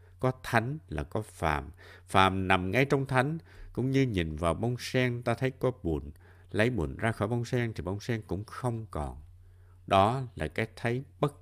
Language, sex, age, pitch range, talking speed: Vietnamese, male, 60-79, 90-125 Hz, 195 wpm